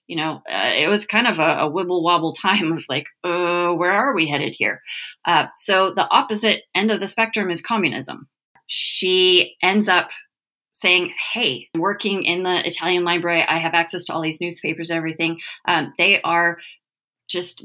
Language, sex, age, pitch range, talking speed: English, female, 30-49, 165-205 Hz, 175 wpm